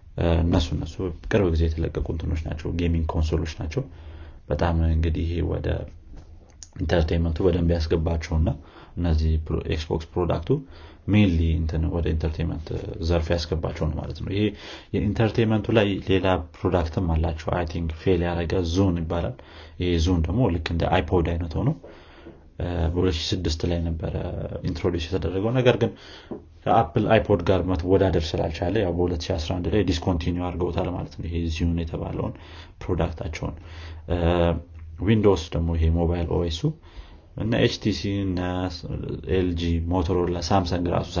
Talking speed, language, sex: 95 wpm, Amharic, male